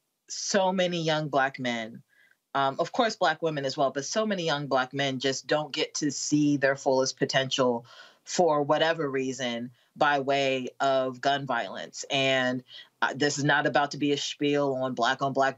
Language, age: English, 30-49